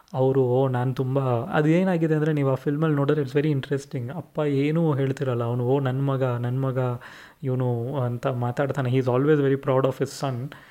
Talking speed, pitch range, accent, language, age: 185 wpm, 125-145 Hz, native, Kannada, 20-39